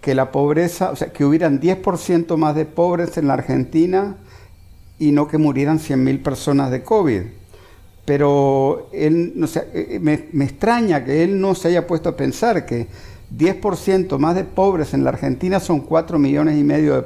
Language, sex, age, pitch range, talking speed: Spanish, male, 50-69, 120-175 Hz, 180 wpm